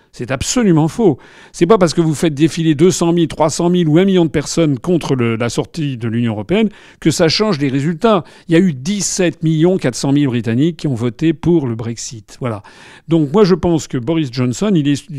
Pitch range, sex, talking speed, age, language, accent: 125-170 Hz, male, 215 wpm, 40-59, French, French